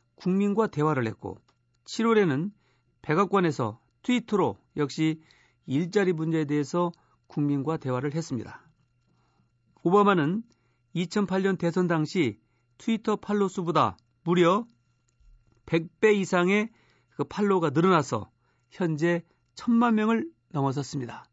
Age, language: 40-59, Korean